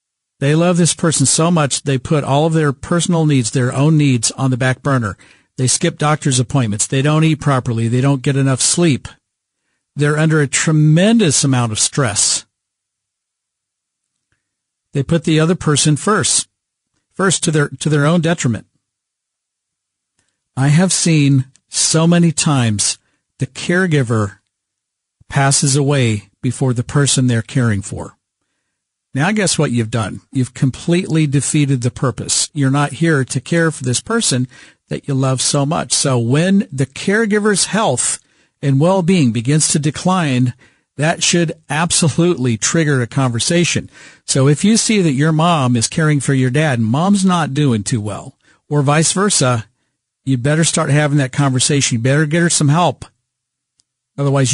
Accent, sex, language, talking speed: American, male, English, 155 wpm